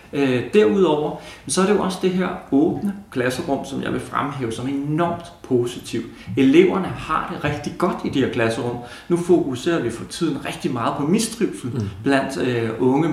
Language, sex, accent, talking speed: Danish, male, native, 170 wpm